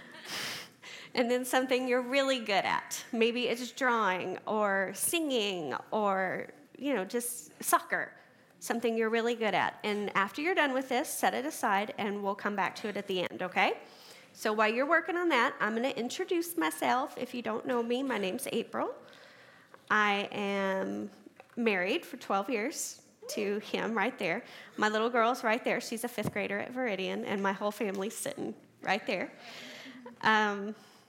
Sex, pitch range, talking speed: female, 210-260 Hz, 170 wpm